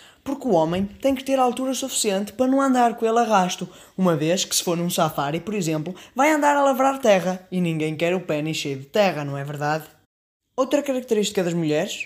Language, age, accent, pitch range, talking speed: Portuguese, 20-39, Brazilian, 165-235 Hz, 220 wpm